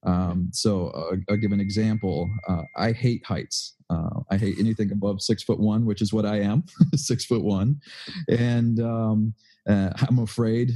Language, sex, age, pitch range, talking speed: English, male, 30-49, 100-125 Hz, 180 wpm